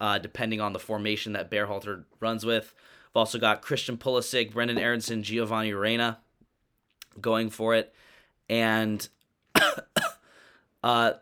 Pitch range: 105-120 Hz